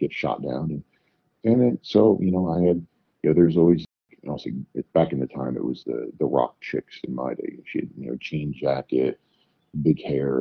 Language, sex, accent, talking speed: English, male, American, 220 wpm